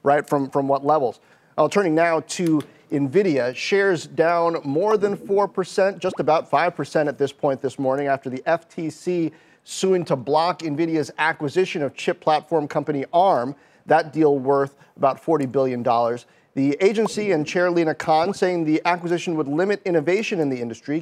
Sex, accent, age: male, American, 40-59